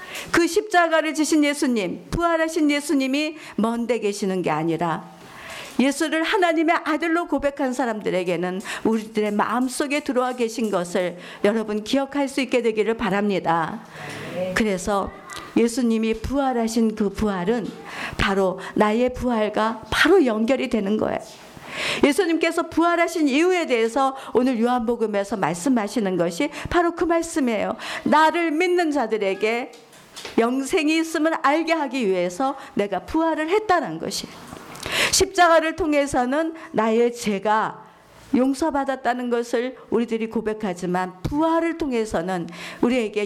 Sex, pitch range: female, 215-315 Hz